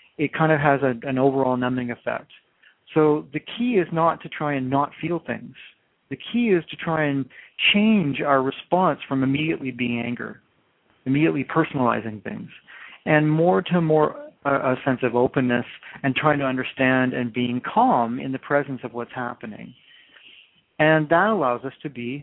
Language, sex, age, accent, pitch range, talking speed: English, male, 40-59, American, 125-160 Hz, 170 wpm